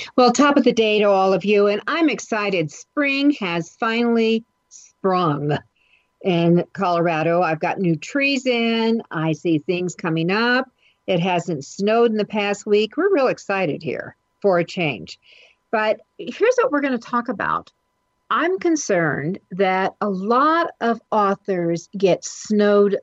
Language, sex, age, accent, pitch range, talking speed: English, female, 50-69, American, 170-230 Hz, 155 wpm